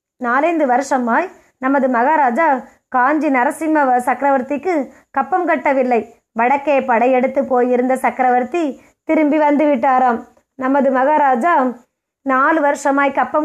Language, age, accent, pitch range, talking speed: Tamil, 20-39, native, 255-310 Hz, 90 wpm